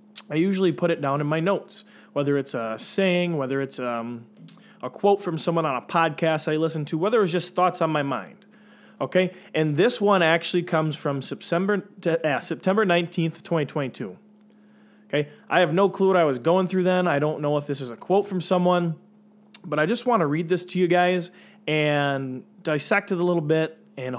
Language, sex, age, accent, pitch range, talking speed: English, male, 20-39, American, 150-195 Hz, 205 wpm